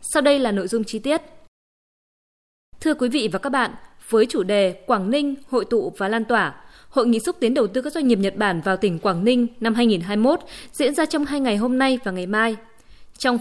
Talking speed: 230 wpm